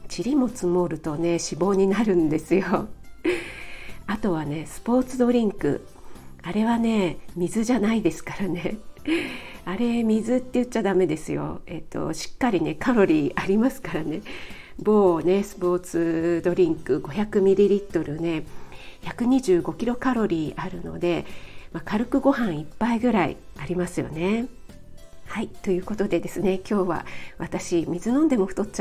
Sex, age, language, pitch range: female, 40-59, Japanese, 175-210 Hz